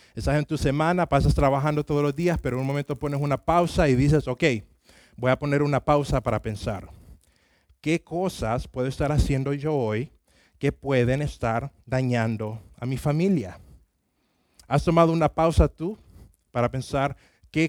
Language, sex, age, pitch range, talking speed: Spanish, male, 30-49, 110-145 Hz, 165 wpm